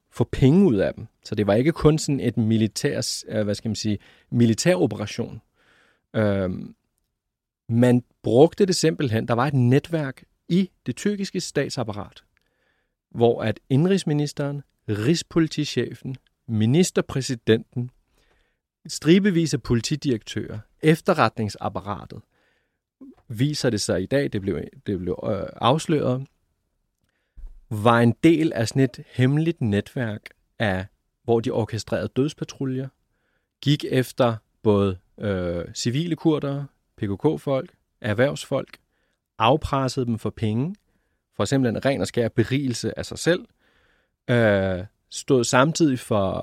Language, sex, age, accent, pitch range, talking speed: Danish, male, 40-59, native, 110-150 Hz, 120 wpm